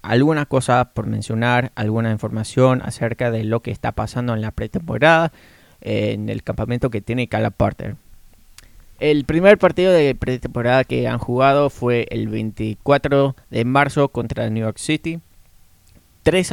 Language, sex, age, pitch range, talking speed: Spanish, male, 20-39, 110-130 Hz, 150 wpm